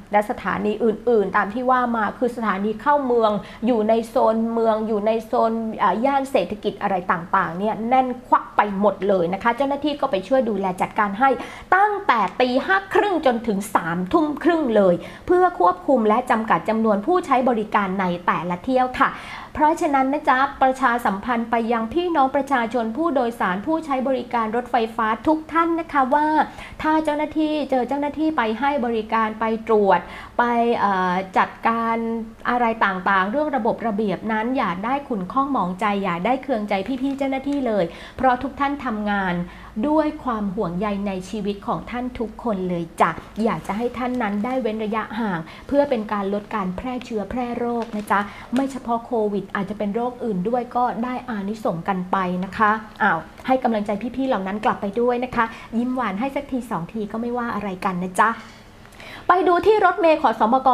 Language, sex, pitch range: Thai, female, 210-270 Hz